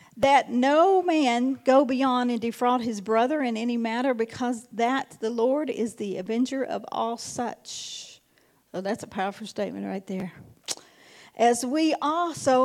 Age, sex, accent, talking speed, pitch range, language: 50-69, female, American, 150 wpm, 215-275 Hz, English